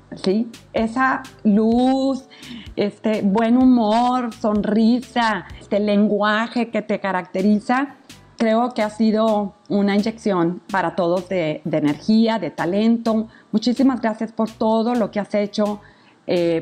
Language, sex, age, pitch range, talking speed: Spanish, female, 40-59, 180-220 Hz, 125 wpm